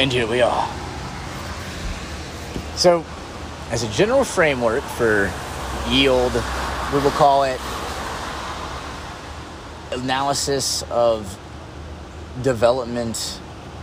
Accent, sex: American, male